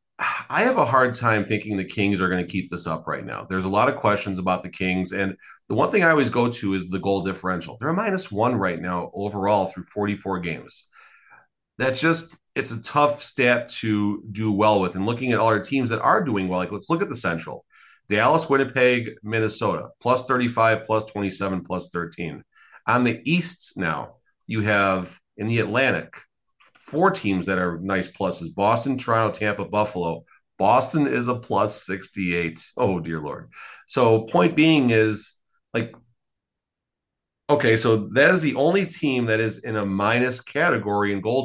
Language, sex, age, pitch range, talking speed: English, male, 40-59, 95-125 Hz, 185 wpm